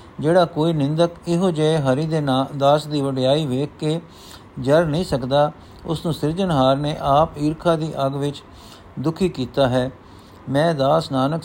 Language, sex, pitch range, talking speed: Punjabi, male, 130-165 Hz, 160 wpm